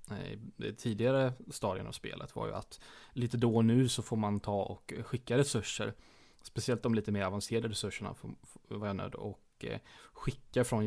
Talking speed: 155 wpm